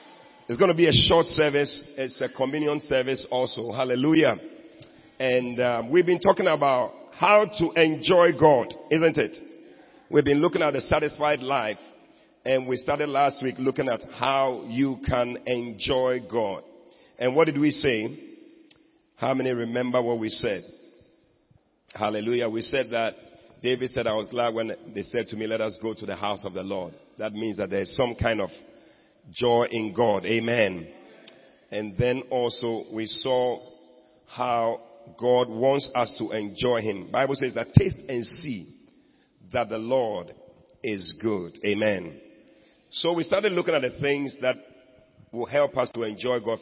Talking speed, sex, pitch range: 165 wpm, male, 120-150 Hz